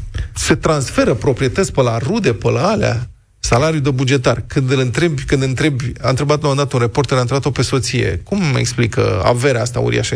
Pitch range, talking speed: 115-155 Hz, 195 wpm